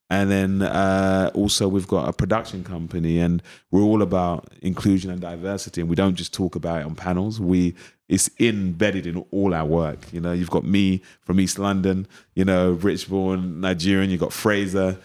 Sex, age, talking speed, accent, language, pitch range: male, 30-49, 185 wpm, British, English, 85-100 Hz